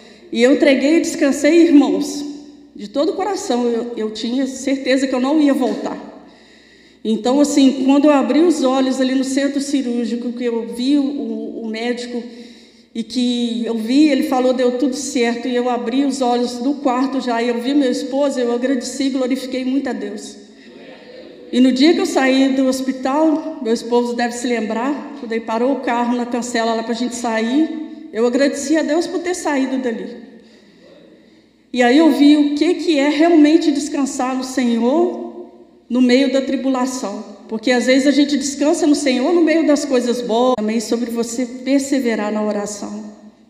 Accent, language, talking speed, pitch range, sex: Brazilian, Portuguese, 180 wpm, 235-275 Hz, female